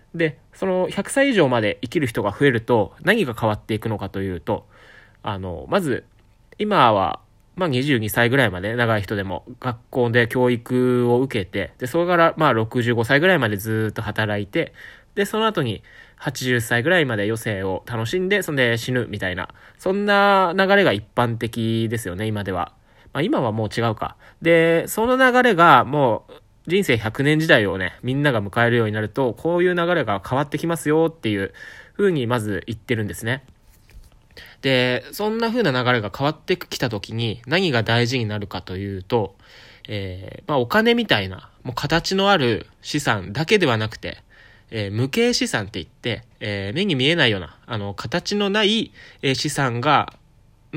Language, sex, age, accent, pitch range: Japanese, male, 20-39, native, 110-160 Hz